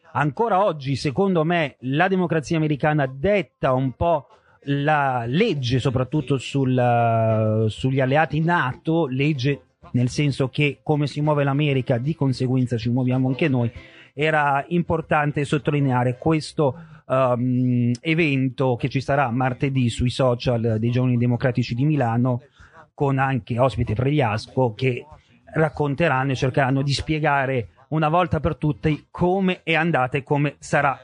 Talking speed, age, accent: 135 wpm, 30-49, native